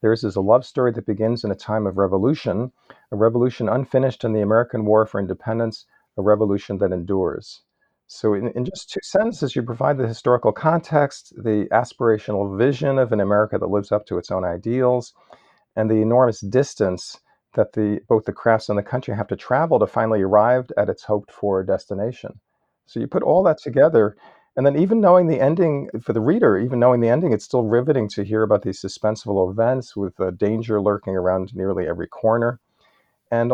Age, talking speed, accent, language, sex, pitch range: 40-59, 195 wpm, American, English, male, 105-125 Hz